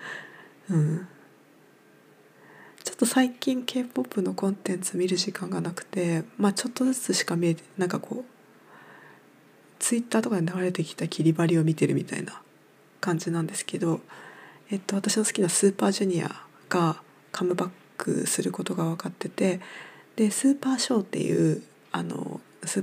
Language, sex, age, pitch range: Japanese, female, 20-39, 175-205 Hz